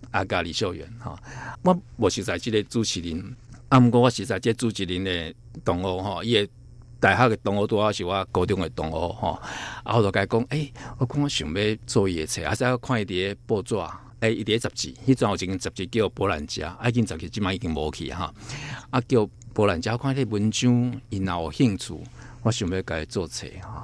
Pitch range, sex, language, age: 95-120 Hz, male, Chinese, 50-69